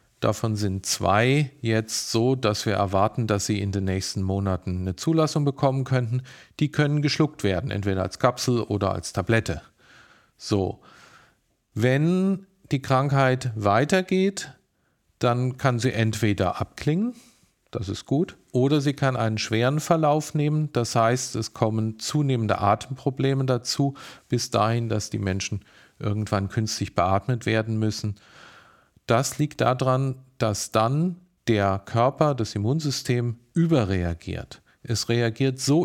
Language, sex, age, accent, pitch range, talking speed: German, male, 40-59, German, 110-140 Hz, 130 wpm